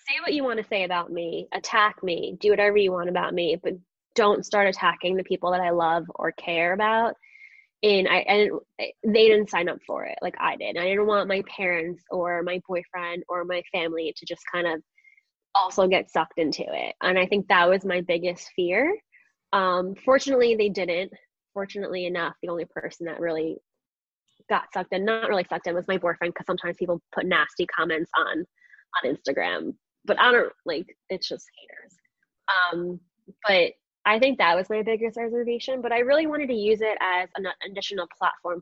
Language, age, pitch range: English, 10-29, 175-220 Hz